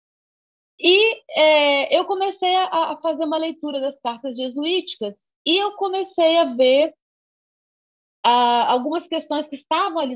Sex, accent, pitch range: female, Brazilian, 240-315 Hz